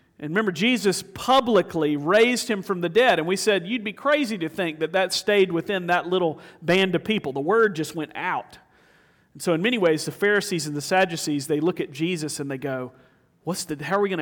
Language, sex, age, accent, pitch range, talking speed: English, male, 40-59, American, 160-210 Hz, 230 wpm